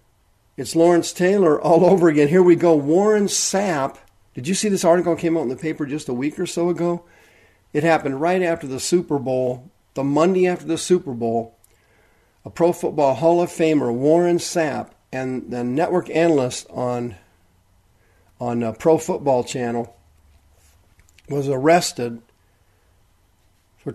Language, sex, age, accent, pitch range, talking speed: English, male, 50-69, American, 110-165 Hz, 155 wpm